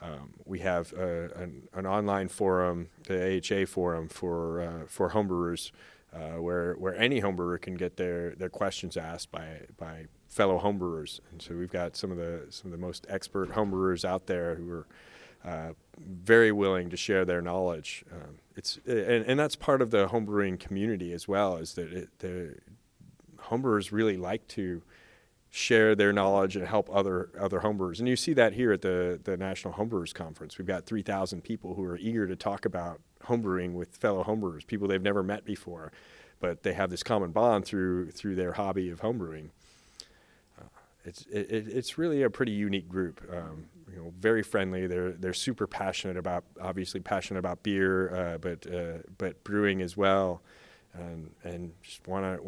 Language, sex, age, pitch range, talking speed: English, male, 30-49, 90-100 Hz, 180 wpm